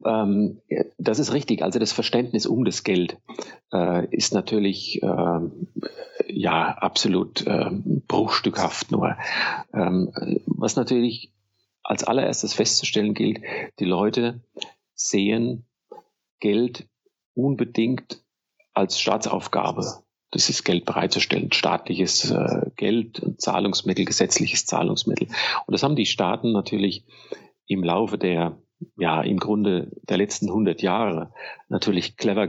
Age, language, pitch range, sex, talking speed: 40-59, German, 95-120 Hz, male, 100 wpm